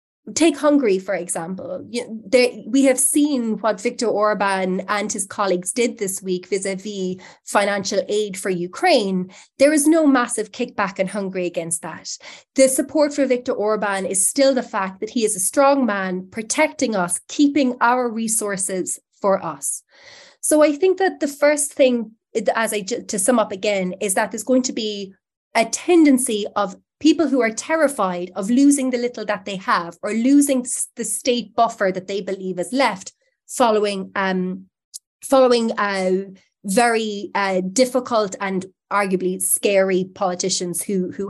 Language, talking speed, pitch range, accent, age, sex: English, 160 wpm, 195-260 Hz, Irish, 20-39, female